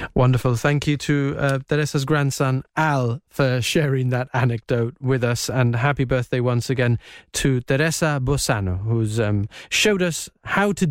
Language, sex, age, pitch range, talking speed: English, male, 30-49, 135-190 Hz, 155 wpm